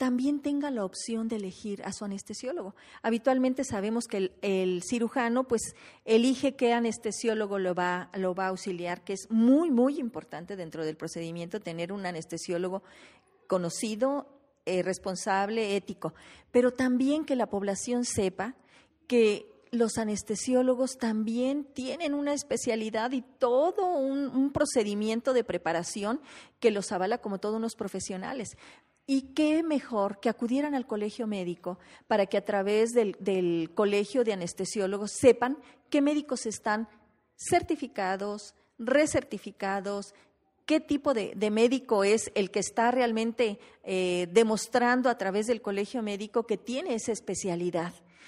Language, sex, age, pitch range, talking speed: Spanish, female, 40-59, 200-260 Hz, 135 wpm